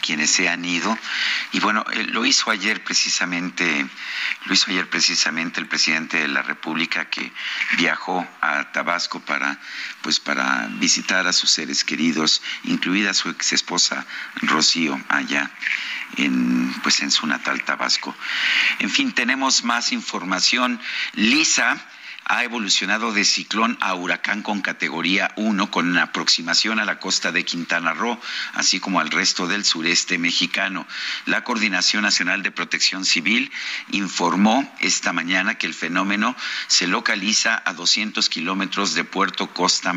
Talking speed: 140 wpm